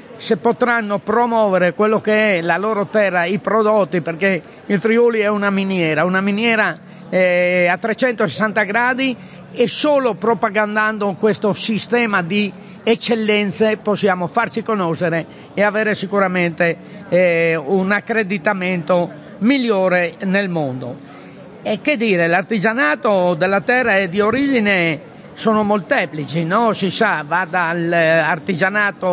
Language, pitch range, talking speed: Italian, 180-220 Hz, 115 wpm